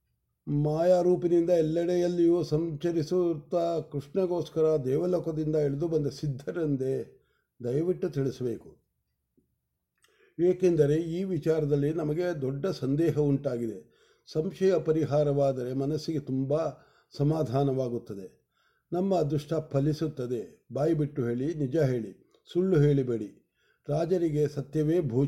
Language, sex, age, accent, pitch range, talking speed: English, male, 50-69, Indian, 140-170 Hz, 85 wpm